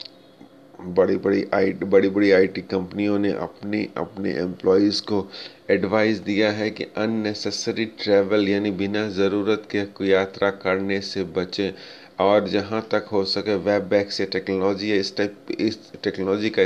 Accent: native